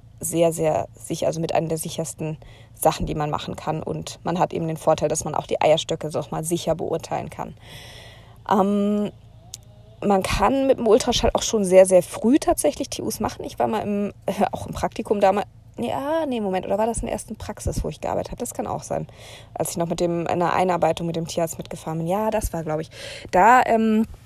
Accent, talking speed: German, 220 wpm